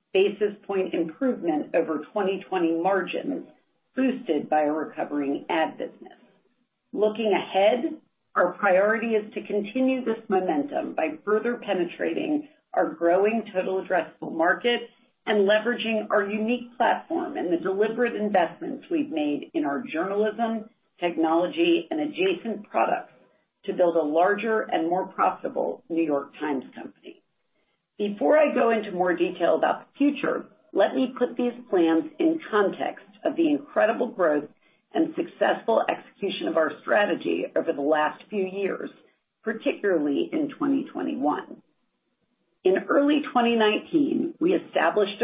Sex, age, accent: female, 50-69, American